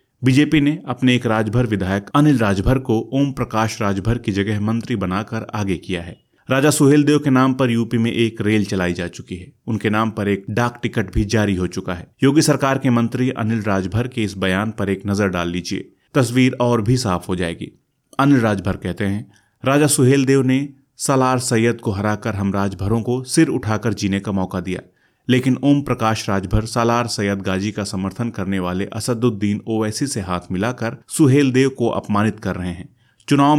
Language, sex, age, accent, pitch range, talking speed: Hindi, male, 30-49, native, 100-125 Hz, 195 wpm